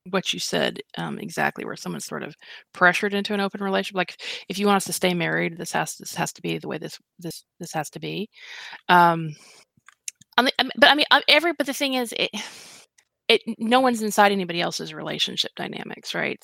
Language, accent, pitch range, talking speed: English, American, 160-225 Hz, 215 wpm